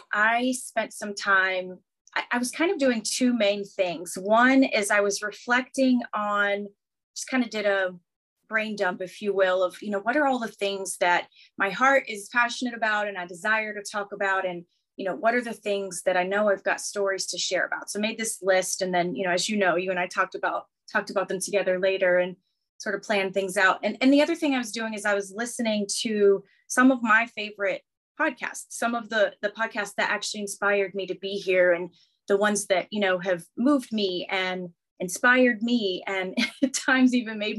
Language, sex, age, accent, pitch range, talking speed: English, female, 30-49, American, 195-240 Hz, 225 wpm